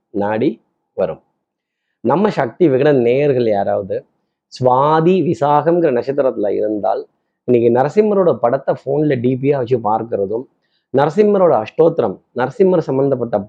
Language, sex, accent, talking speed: Tamil, male, native, 100 wpm